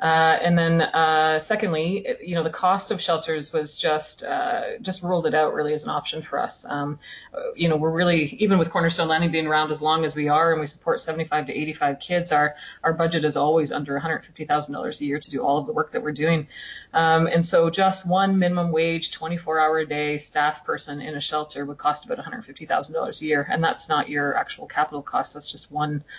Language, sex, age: English, female, 30-49